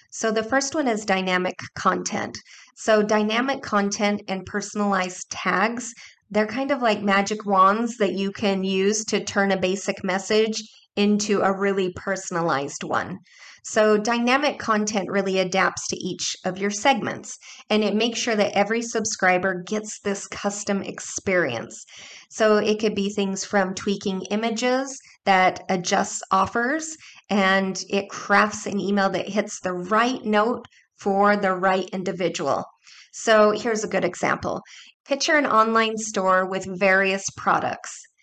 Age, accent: 30-49, American